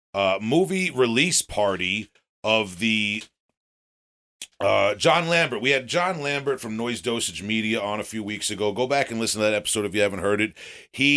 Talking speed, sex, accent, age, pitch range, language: 190 wpm, male, American, 40-59, 110-135 Hz, English